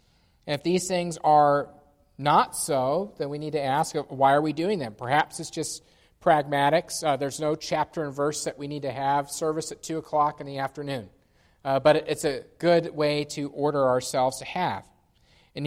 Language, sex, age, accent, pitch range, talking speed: English, male, 40-59, American, 140-165 Hz, 195 wpm